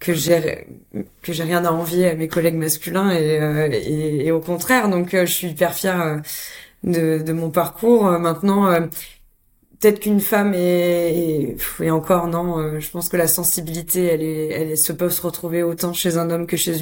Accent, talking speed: French, 185 wpm